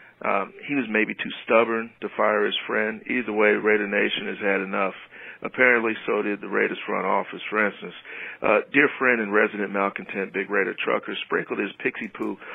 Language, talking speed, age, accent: English, 185 wpm, 50-69, American